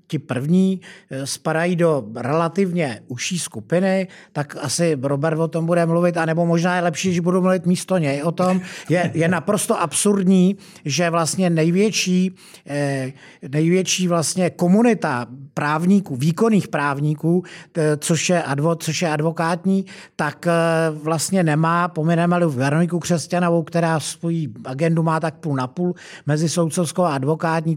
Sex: male